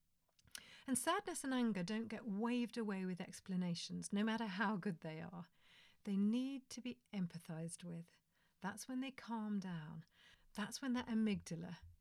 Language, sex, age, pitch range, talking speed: English, female, 40-59, 170-220 Hz, 155 wpm